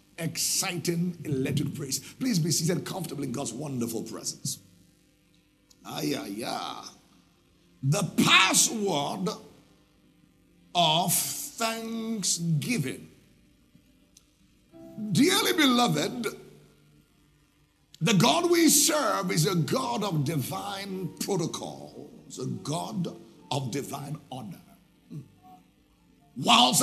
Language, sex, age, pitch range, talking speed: English, male, 60-79, 145-235 Hz, 80 wpm